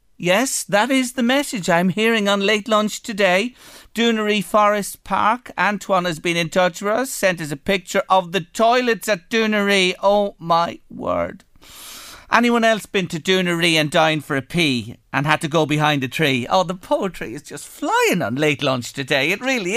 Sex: male